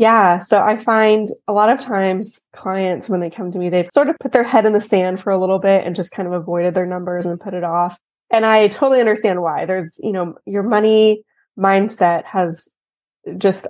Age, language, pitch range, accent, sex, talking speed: 20-39, English, 175-215 Hz, American, female, 225 wpm